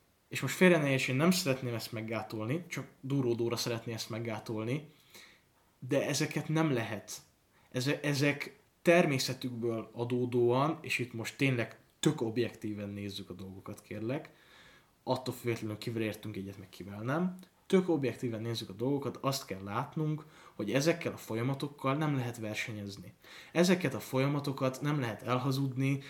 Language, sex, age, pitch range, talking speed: Hungarian, male, 20-39, 110-135 Hz, 140 wpm